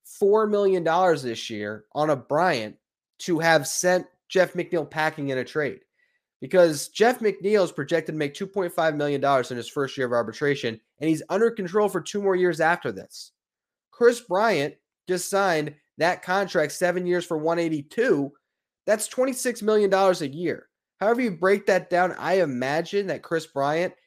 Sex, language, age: male, English, 20-39